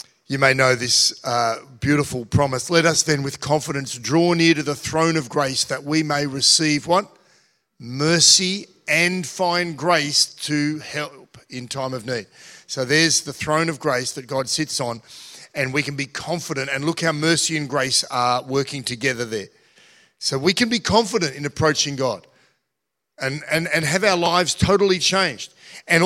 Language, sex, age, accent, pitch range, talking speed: English, male, 40-59, Australian, 135-170 Hz, 175 wpm